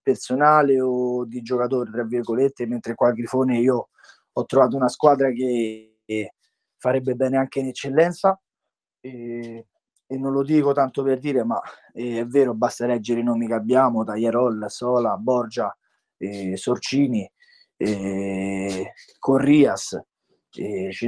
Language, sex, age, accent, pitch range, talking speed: Italian, male, 20-39, native, 120-145 Hz, 120 wpm